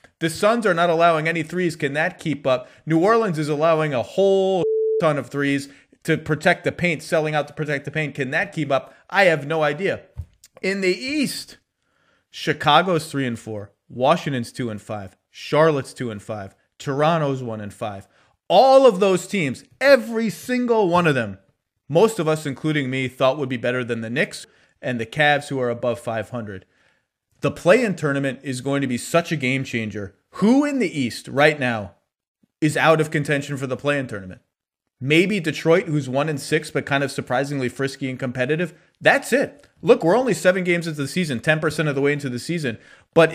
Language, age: English, 30-49